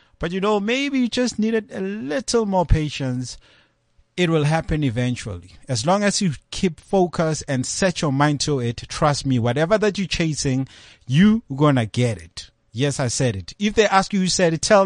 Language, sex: English, male